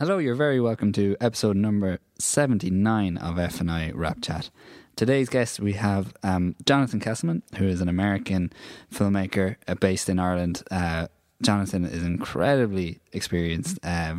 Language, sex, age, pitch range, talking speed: English, male, 20-39, 85-100 Hz, 145 wpm